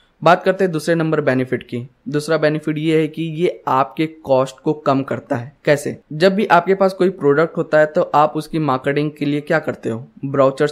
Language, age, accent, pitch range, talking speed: Hindi, 20-39, native, 135-160 Hz, 215 wpm